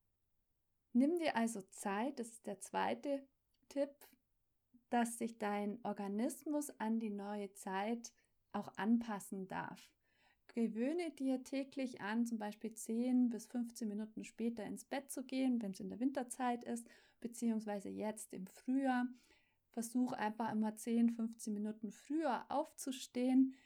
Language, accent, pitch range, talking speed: German, German, 205-255 Hz, 135 wpm